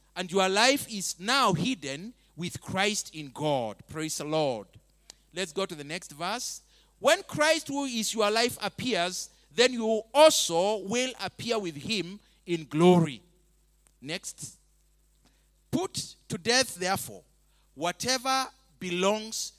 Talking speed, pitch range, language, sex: 130 wpm, 170-225 Hz, English, male